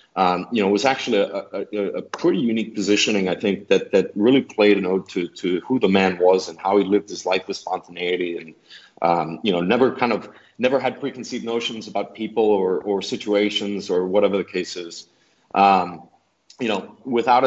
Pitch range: 95-110 Hz